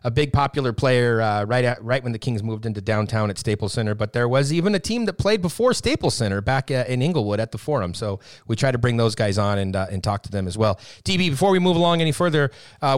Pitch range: 120-150 Hz